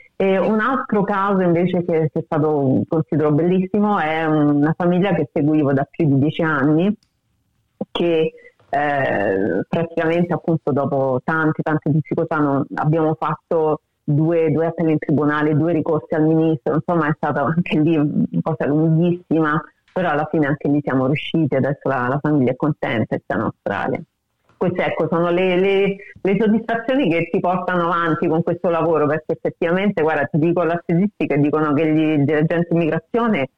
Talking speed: 170 wpm